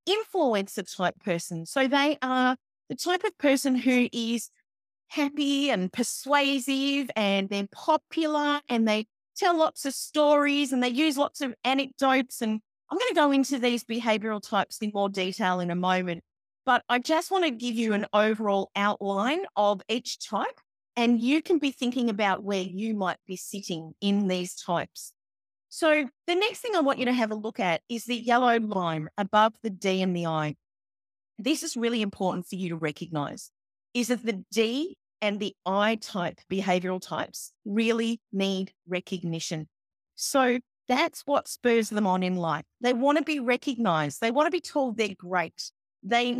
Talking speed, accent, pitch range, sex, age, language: 175 wpm, Australian, 185-265 Hz, female, 40-59, English